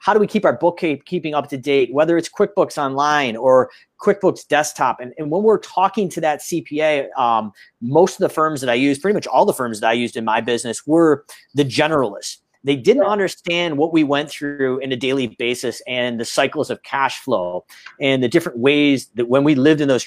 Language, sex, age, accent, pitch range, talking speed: English, male, 40-59, American, 135-180 Hz, 220 wpm